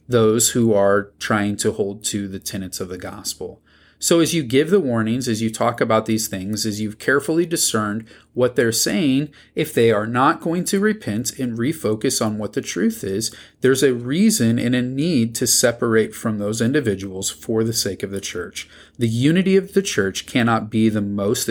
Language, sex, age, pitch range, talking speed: English, male, 30-49, 100-125 Hz, 200 wpm